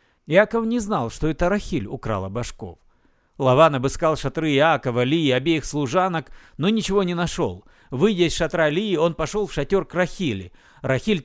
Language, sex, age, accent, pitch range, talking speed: Russian, male, 50-69, native, 145-225 Hz, 160 wpm